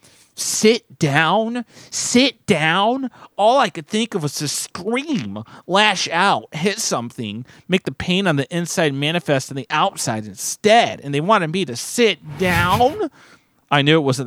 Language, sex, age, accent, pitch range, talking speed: English, male, 30-49, American, 130-170 Hz, 160 wpm